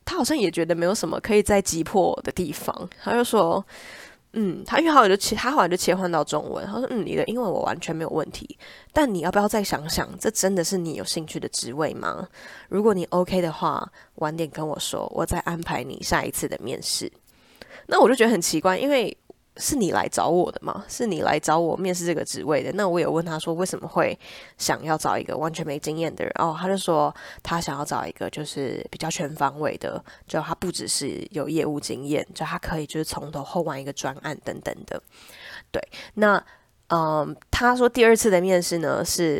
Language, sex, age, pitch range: Chinese, female, 20-39, 160-205 Hz